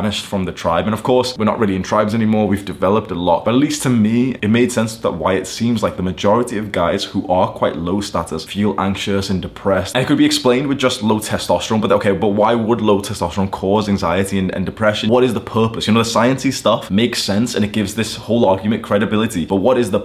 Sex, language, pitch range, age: male, English, 95-110 Hz, 20-39